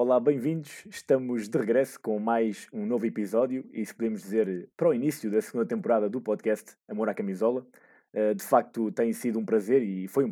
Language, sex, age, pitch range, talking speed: Portuguese, male, 20-39, 110-145 Hz, 200 wpm